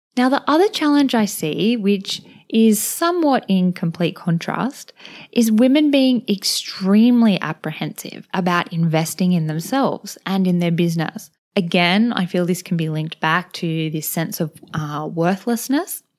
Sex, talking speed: female, 145 wpm